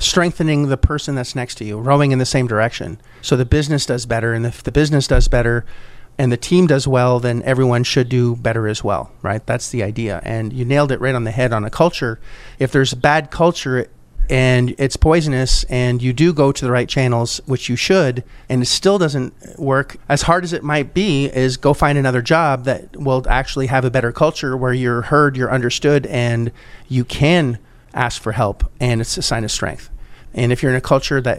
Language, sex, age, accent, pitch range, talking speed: English, male, 30-49, American, 120-145 Hz, 220 wpm